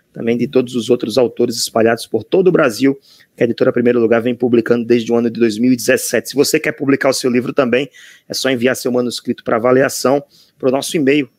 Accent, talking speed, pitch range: Brazilian, 220 wpm, 120-145 Hz